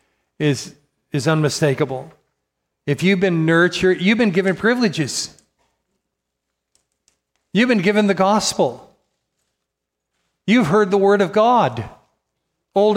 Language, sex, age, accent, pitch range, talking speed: English, male, 50-69, American, 130-165 Hz, 105 wpm